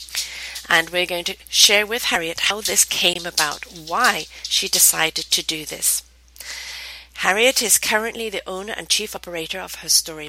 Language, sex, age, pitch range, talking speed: English, female, 50-69, 155-215 Hz, 165 wpm